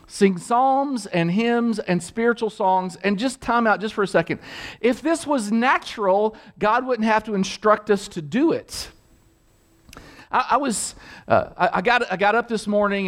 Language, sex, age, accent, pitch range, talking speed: English, male, 50-69, American, 190-250 Hz, 185 wpm